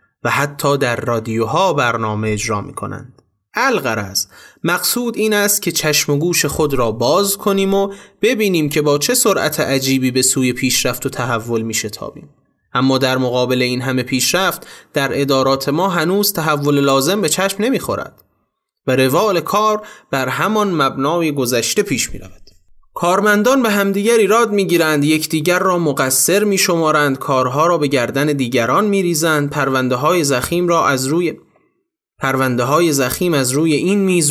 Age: 30-49